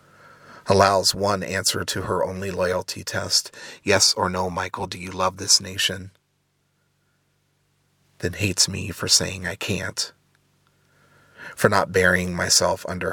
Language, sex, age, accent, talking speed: English, male, 30-49, American, 135 wpm